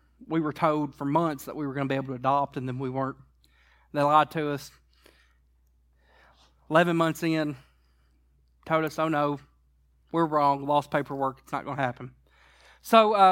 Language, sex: English, male